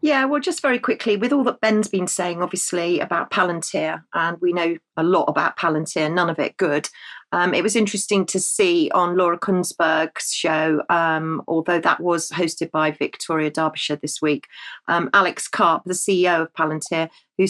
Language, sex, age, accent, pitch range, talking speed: English, female, 40-59, British, 170-220 Hz, 180 wpm